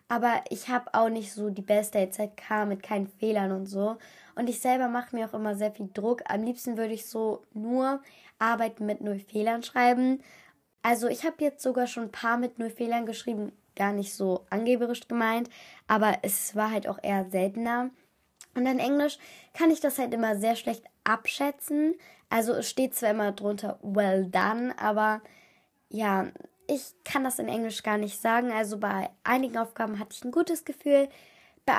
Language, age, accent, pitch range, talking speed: German, 10-29, German, 210-255 Hz, 185 wpm